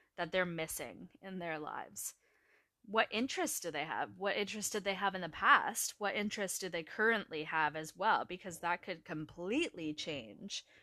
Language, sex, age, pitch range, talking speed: English, female, 20-39, 175-235 Hz, 175 wpm